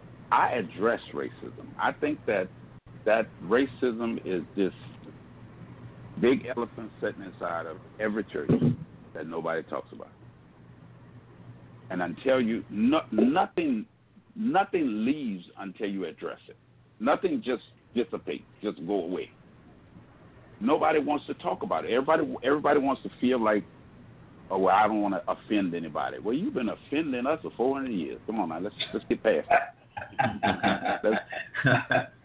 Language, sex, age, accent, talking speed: English, male, 60-79, American, 140 wpm